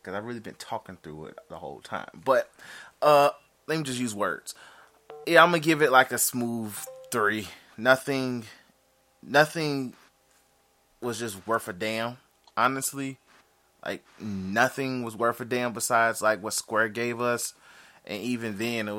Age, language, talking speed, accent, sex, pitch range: 20-39, English, 160 wpm, American, male, 105-125 Hz